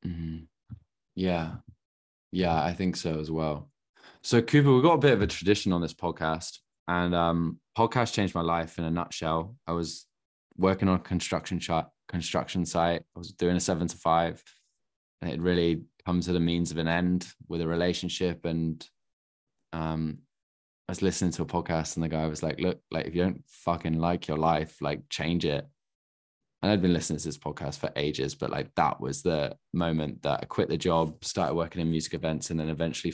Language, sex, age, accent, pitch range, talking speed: English, male, 20-39, British, 80-95 Hz, 205 wpm